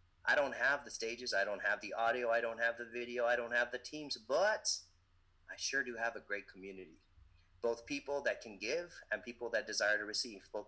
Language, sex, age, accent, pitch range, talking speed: English, male, 30-49, American, 95-120 Hz, 225 wpm